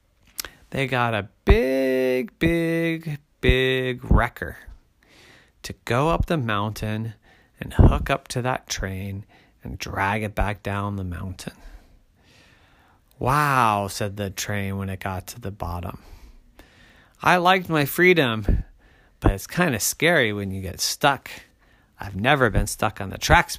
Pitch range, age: 95-140 Hz, 30-49